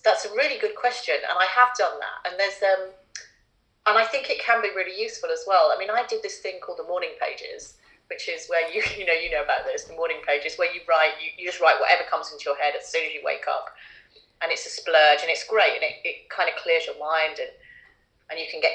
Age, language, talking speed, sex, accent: 30-49, English, 265 wpm, female, British